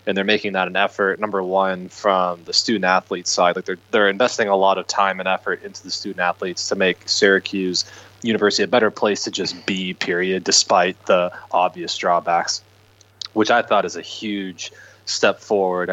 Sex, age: male, 20-39